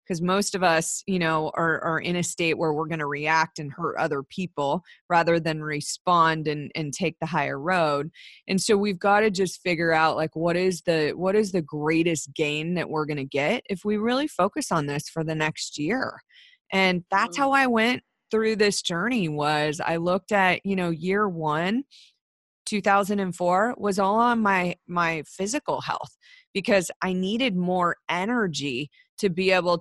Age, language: 30-49, English